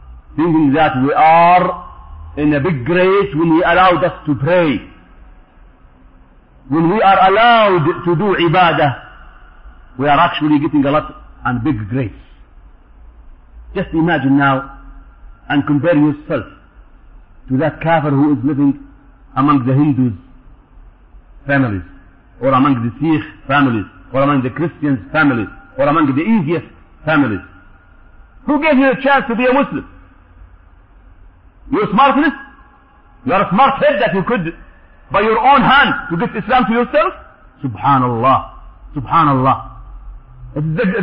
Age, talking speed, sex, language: 50-69, 135 wpm, male, English